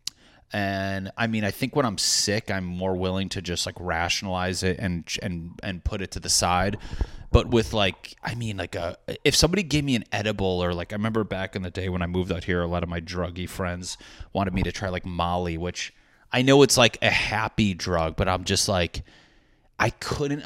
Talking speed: 225 wpm